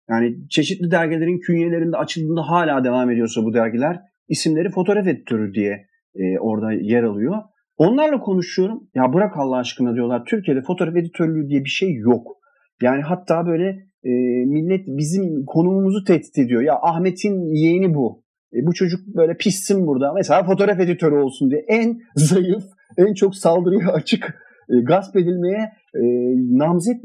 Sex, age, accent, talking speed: male, 40-59, native, 150 wpm